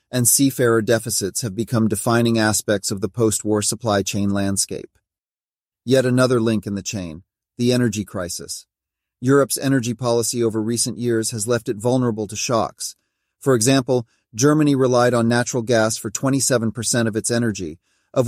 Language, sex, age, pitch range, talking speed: English, male, 40-59, 105-125 Hz, 155 wpm